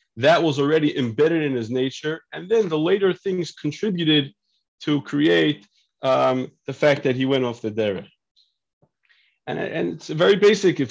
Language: English